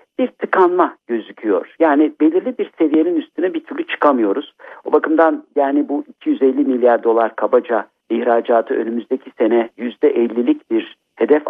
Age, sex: 60-79, male